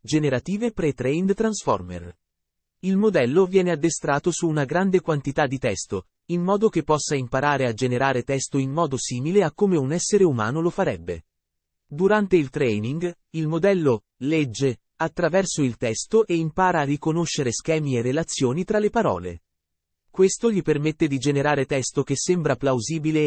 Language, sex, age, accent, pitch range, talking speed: Italian, male, 30-49, native, 130-175 Hz, 150 wpm